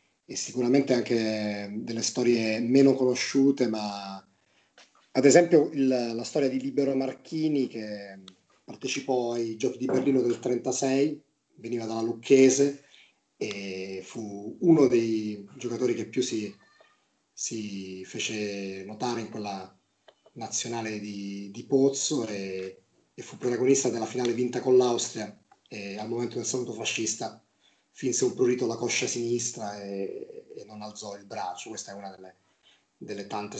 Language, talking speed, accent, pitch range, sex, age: Italian, 140 wpm, native, 105-125 Hz, male, 30-49